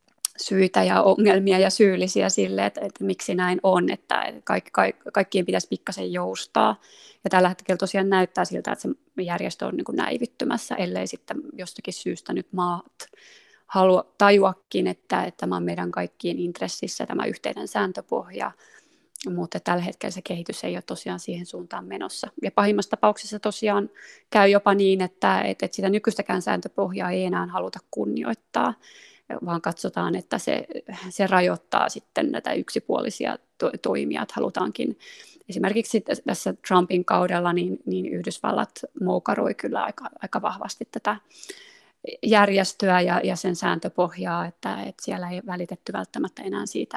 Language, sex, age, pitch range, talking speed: Finnish, female, 20-39, 175-210 Hz, 145 wpm